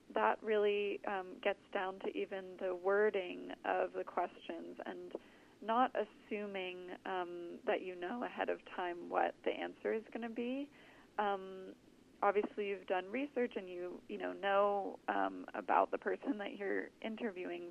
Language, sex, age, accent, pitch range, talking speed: English, female, 30-49, American, 180-250 Hz, 155 wpm